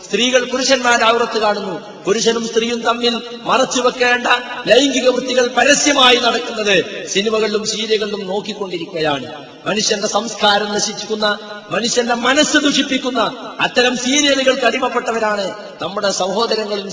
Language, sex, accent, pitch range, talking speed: Malayalam, male, native, 210-255 Hz, 90 wpm